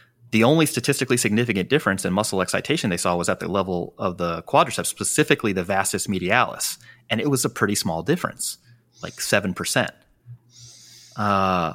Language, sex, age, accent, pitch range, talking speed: English, male, 30-49, American, 95-120 Hz, 160 wpm